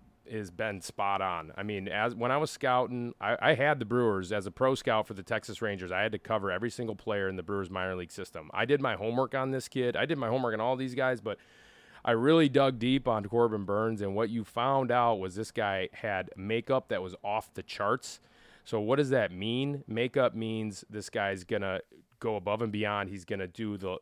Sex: male